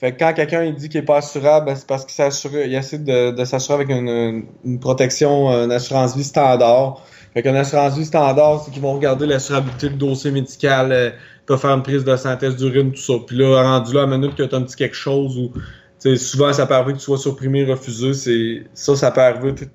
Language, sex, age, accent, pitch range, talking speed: French, male, 20-39, Canadian, 130-155 Hz, 235 wpm